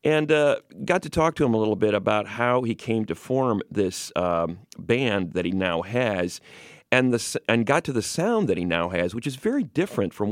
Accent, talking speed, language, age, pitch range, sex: American, 220 wpm, English, 40-59, 95-125 Hz, male